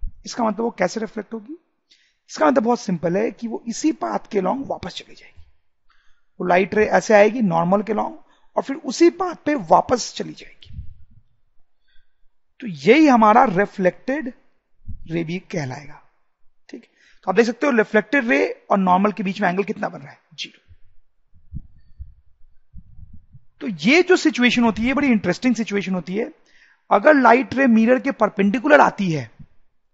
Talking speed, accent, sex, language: 120 wpm, Indian, male, English